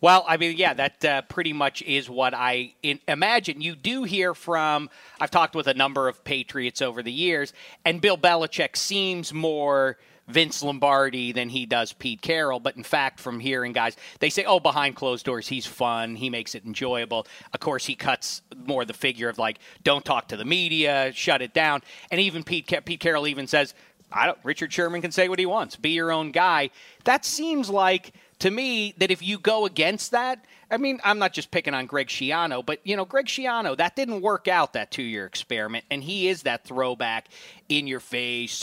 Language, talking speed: English, 200 wpm